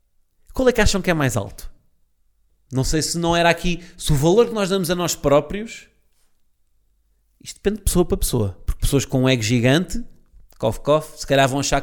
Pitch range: 125-175 Hz